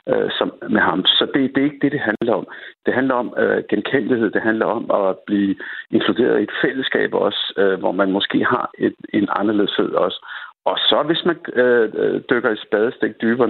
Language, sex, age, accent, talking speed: Danish, male, 60-79, native, 200 wpm